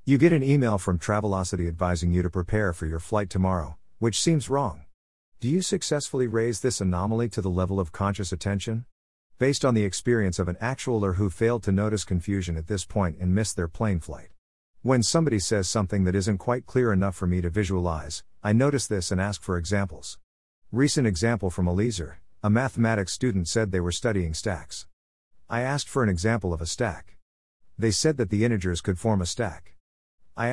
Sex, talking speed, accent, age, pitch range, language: male, 200 wpm, American, 50-69, 90-115 Hz, English